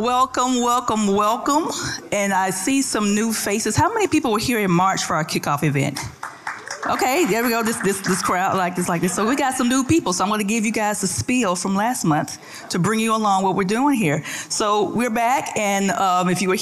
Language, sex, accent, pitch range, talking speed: English, female, American, 175-225 Hz, 235 wpm